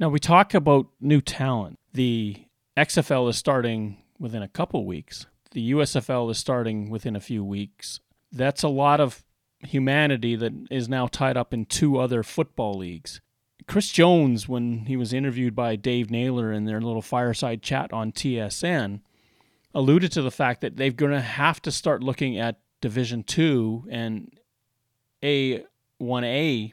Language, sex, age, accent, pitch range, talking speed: English, male, 30-49, American, 115-150 Hz, 155 wpm